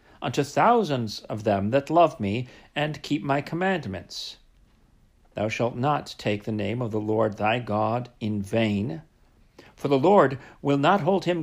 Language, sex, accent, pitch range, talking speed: English, male, American, 110-155 Hz, 165 wpm